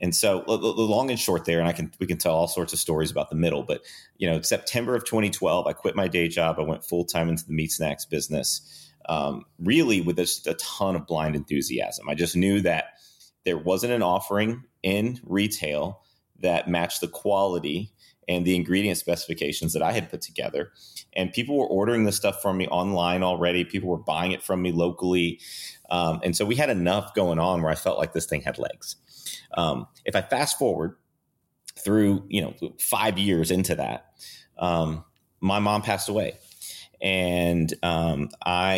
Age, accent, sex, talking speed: 30-49, American, male, 190 wpm